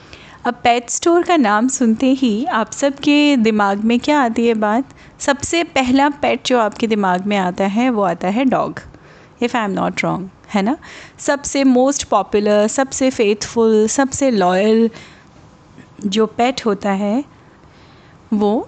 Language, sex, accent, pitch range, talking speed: Hindi, female, native, 205-275 Hz, 155 wpm